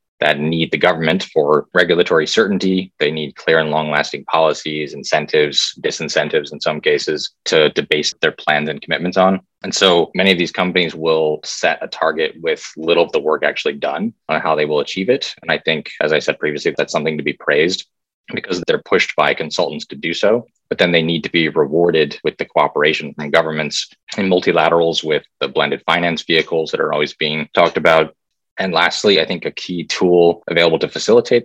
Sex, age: male, 20-39